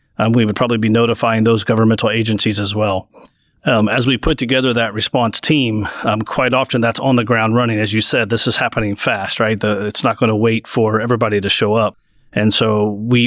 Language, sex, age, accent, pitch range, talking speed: English, male, 30-49, American, 110-125 Hz, 220 wpm